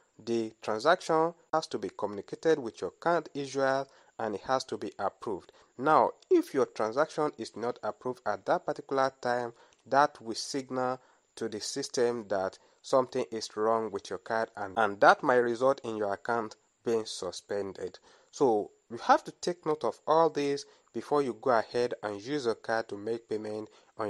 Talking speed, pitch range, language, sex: 175 wpm, 115-160 Hz, English, male